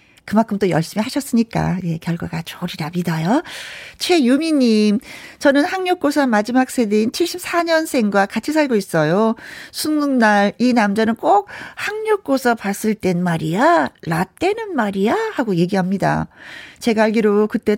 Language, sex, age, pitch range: Korean, female, 40-59, 195-285 Hz